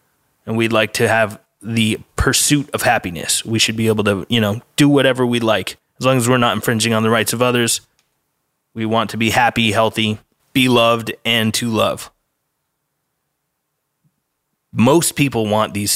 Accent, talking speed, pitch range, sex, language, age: American, 175 wpm, 110-130 Hz, male, English, 20-39